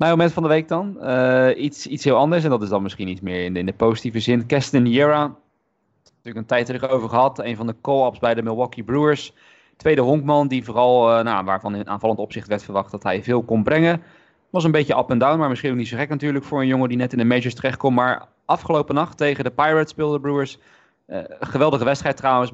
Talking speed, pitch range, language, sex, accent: 250 wpm, 115-145 Hz, Dutch, male, Dutch